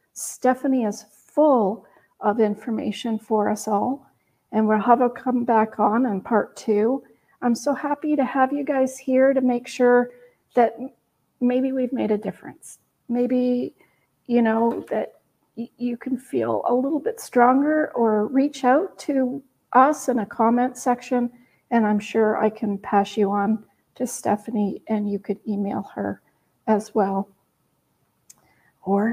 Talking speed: 150 wpm